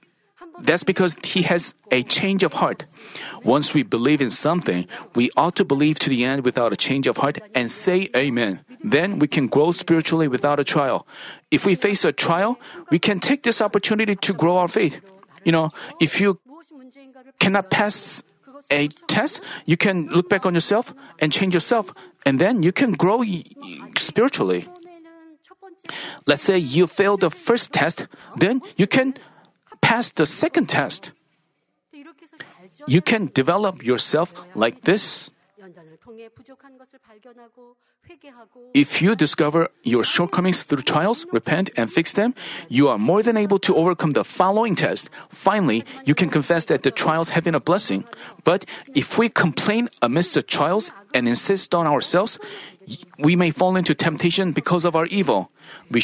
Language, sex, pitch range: Korean, male, 160-225 Hz